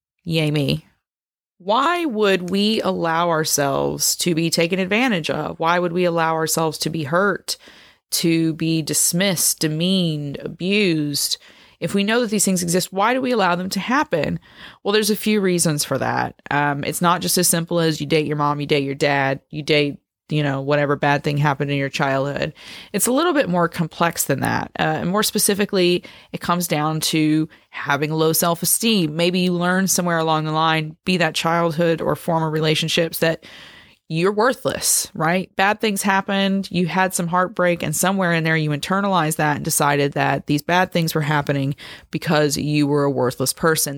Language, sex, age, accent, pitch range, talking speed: English, female, 30-49, American, 150-180 Hz, 185 wpm